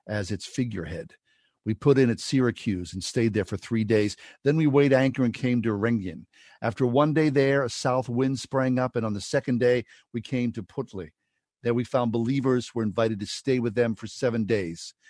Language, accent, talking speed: English, American, 210 wpm